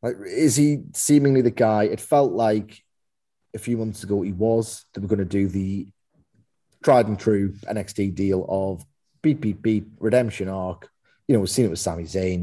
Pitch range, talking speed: 95-120 Hz, 190 wpm